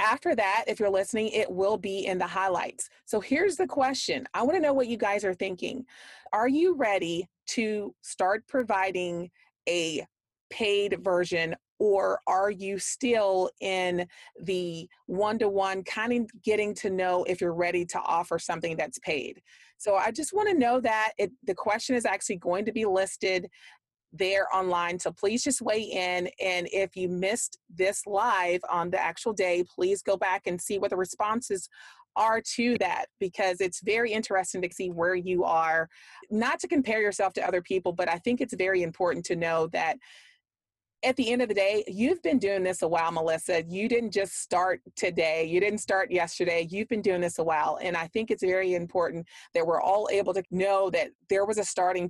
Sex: female